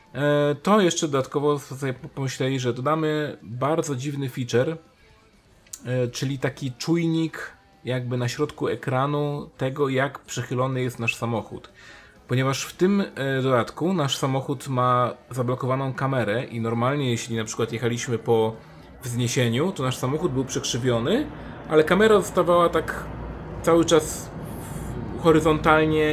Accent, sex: native, male